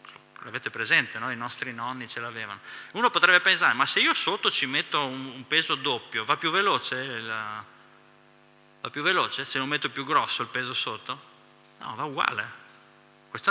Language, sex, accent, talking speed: Italian, male, native, 170 wpm